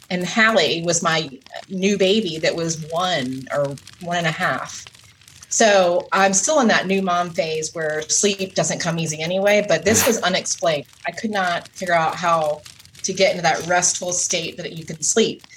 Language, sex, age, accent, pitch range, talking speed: English, female, 30-49, American, 160-195 Hz, 185 wpm